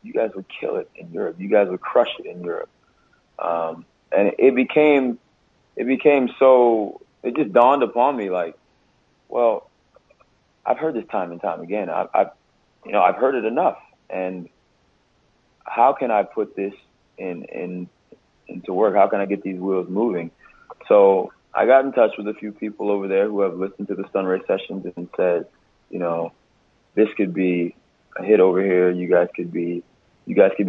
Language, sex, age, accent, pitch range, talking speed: English, male, 30-49, American, 90-105 Hz, 185 wpm